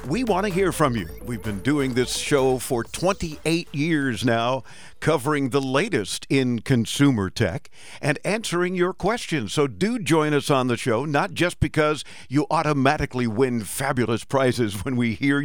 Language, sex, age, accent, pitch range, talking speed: English, male, 50-69, American, 120-150 Hz, 165 wpm